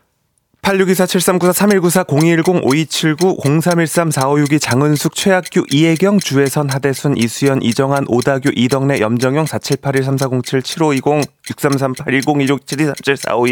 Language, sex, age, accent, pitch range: Korean, male, 30-49, native, 120-175 Hz